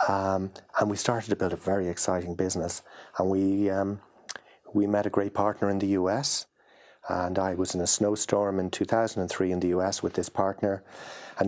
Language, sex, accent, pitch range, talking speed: English, male, Irish, 90-100 Hz, 190 wpm